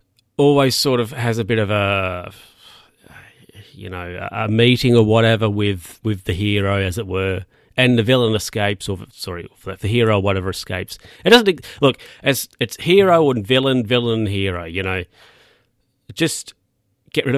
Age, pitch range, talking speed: 40-59, 105-125 Hz, 170 wpm